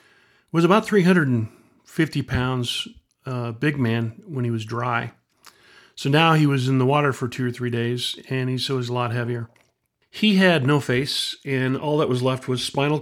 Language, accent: English, American